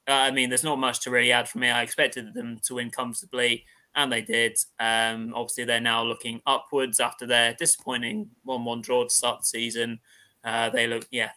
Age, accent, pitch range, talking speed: 20-39, British, 120-135 Hz, 200 wpm